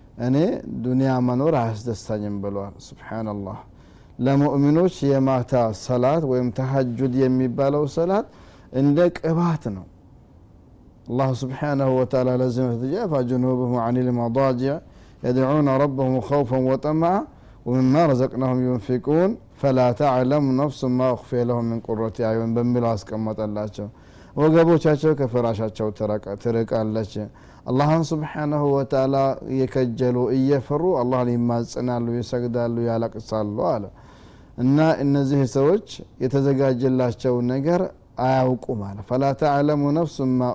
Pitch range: 120-140 Hz